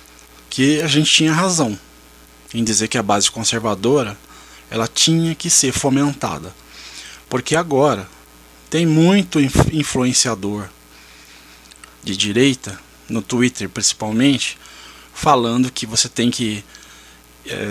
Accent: Brazilian